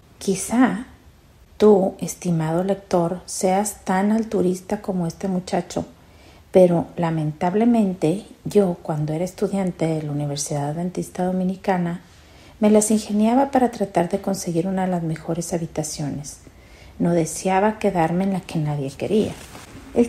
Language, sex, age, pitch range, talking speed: Spanish, female, 40-59, 160-210 Hz, 125 wpm